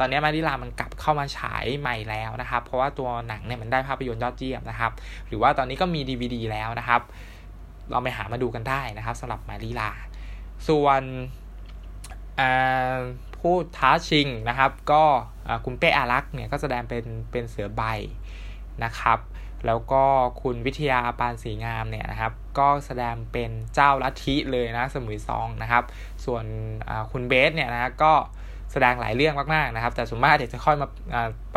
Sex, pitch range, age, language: male, 110-135 Hz, 20-39, Thai